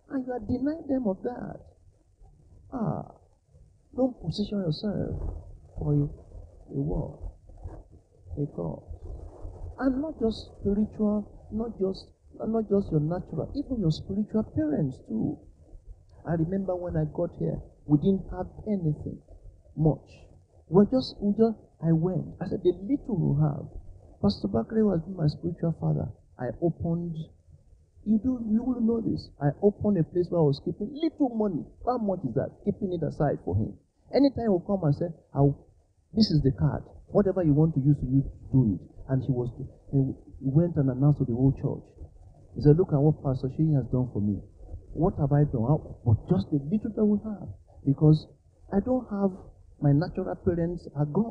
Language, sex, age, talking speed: English, male, 50-69, 170 wpm